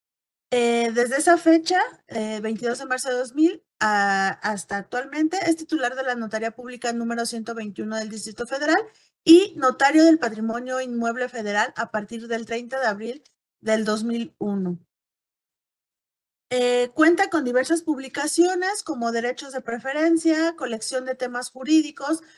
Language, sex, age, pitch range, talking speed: Spanish, female, 40-59, 225-280 Hz, 135 wpm